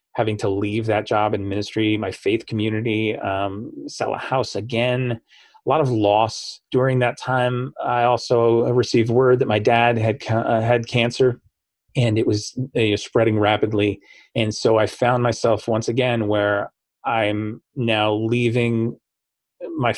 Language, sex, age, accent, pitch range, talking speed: English, male, 30-49, American, 105-125 Hz, 155 wpm